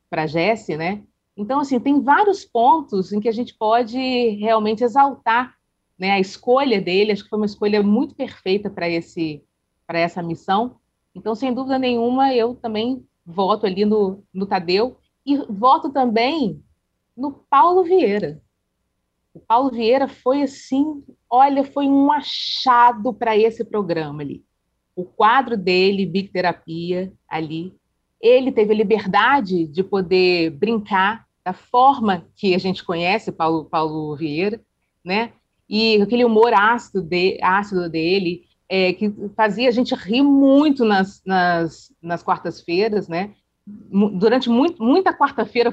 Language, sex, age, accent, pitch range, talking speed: Portuguese, female, 30-49, Brazilian, 180-245 Hz, 140 wpm